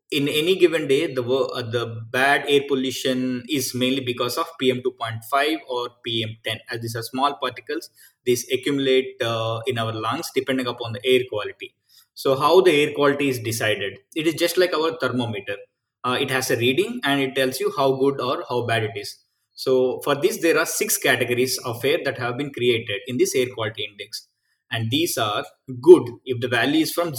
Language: Tamil